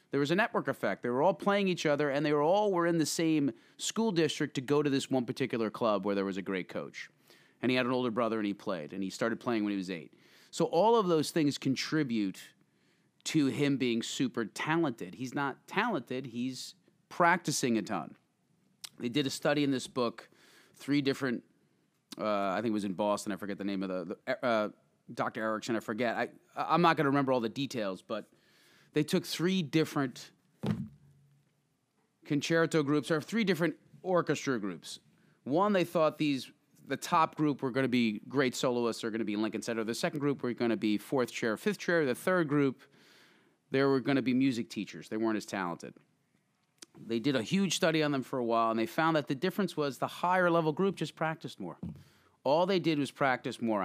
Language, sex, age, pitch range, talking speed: English, male, 30-49, 115-160 Hz, 215 wpm